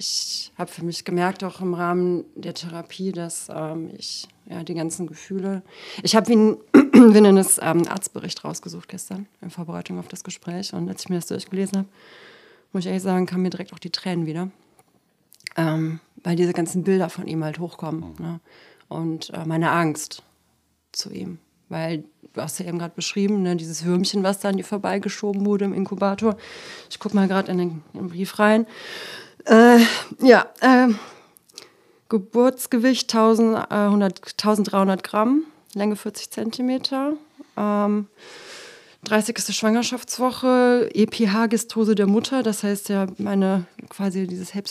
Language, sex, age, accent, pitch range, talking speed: German, female, 30-49, German, 180-225 Hz, 155 wpm